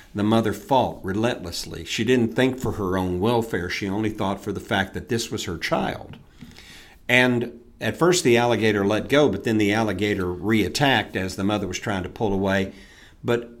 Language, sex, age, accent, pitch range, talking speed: English, male, 50-69, American, 95-120 Hz, 190 wpm